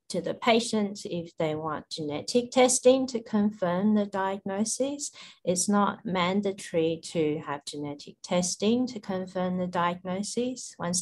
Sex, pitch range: female, 160-195 Hz